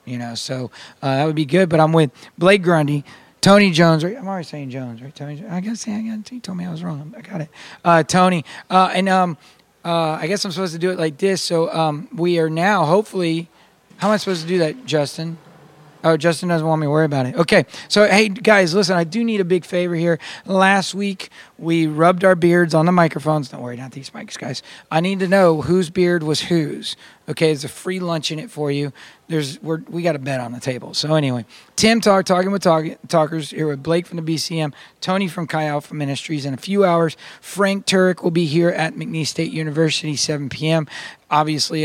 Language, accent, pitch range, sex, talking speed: English, American, 150-185 Hz, male, 225 wpm